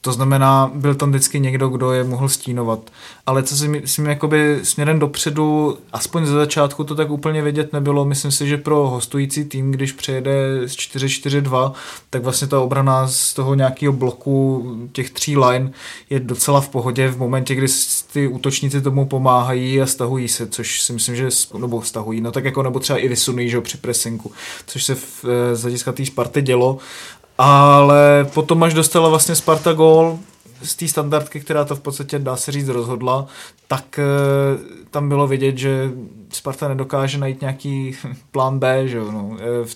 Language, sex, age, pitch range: Czech, male, 20-39, 125-140 Hz